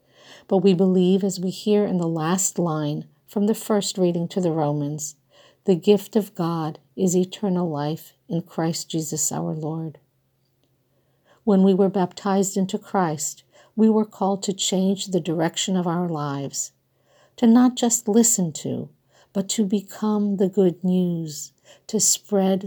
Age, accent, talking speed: 50-69, American, 155 wpm